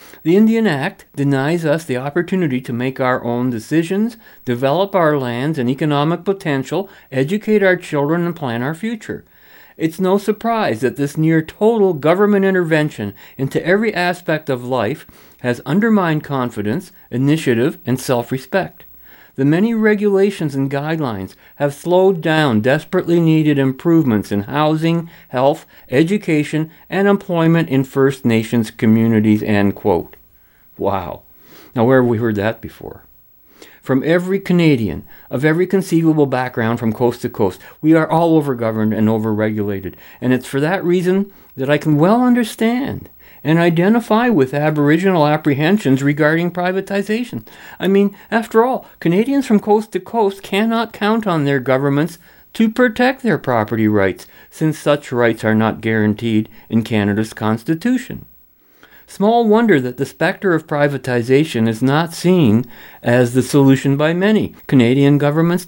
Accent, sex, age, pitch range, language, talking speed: American, male, 50-69, 125-190 Hz, English, 140 wpm